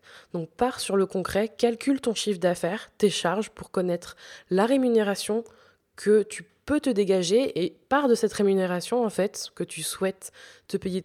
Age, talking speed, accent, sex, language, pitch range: 20-39, 175 wpm, French, female, French, 175-220 Hz